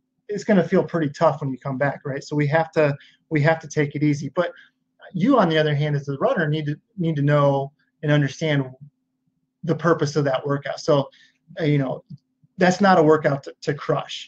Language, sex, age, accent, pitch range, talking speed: English, male, 30-49, American, 140-160 Hz, 215 wpm